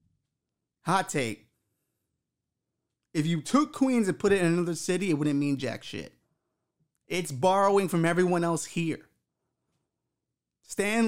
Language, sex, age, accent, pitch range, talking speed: English, male, 30-49, American, 135-170 Hz, 130 wpm